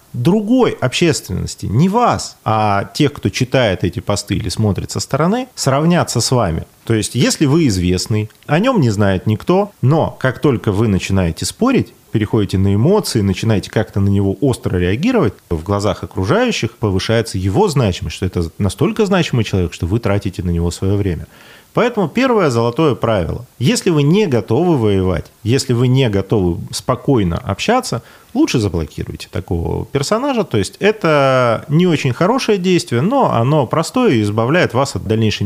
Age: 30-49